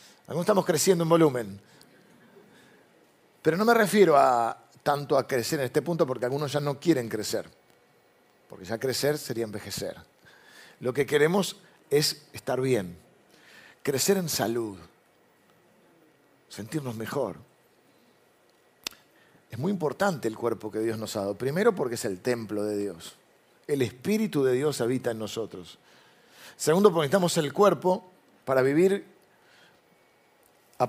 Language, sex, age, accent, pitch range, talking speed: Spanish, male, 50-69, Argentinian, 115-165 Hz, 135 wpm